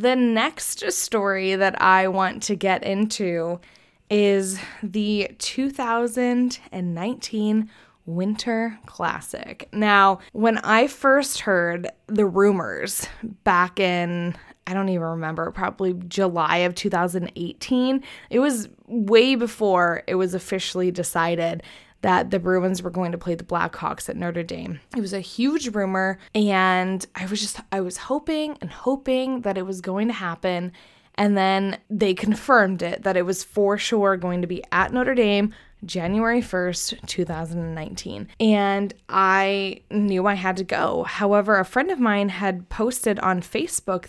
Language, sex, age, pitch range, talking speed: English, female, 20-39, 185-225 Hz, 145 wpm